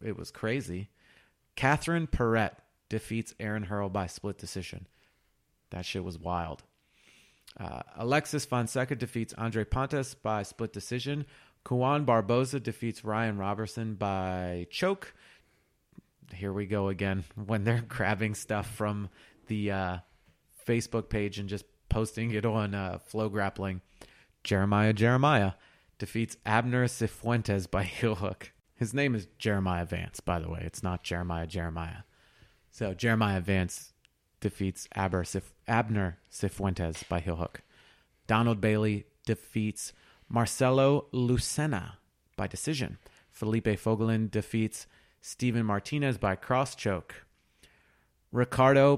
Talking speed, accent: 120 wpm, American